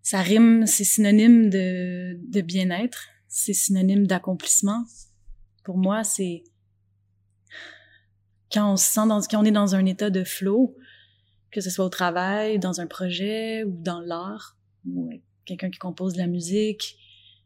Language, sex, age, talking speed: French, female, 30-49, 150 wpm